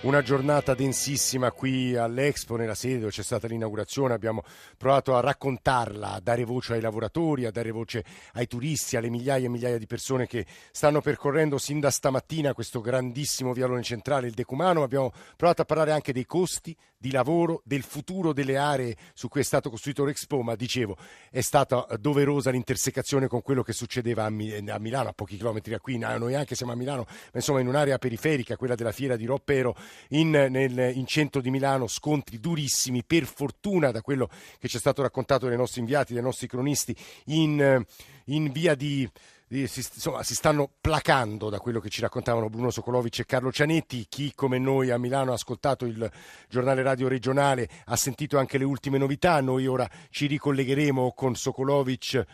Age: 50-69